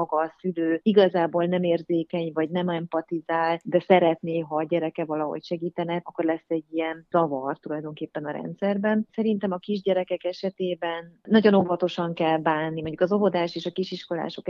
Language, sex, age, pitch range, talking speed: Hungarian, female, 30-49, 155-175 Hz, 155 wpm